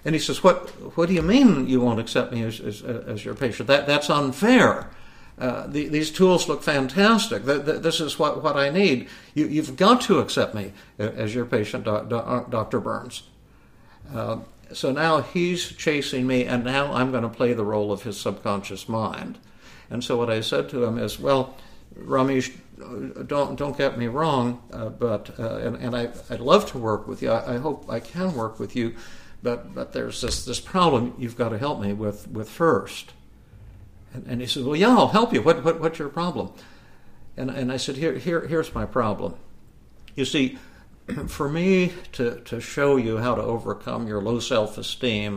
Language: English